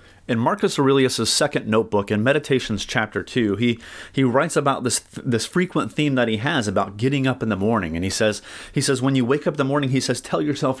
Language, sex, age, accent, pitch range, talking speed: English, male, 30-49, American, 105-135 Hz, 240 wpm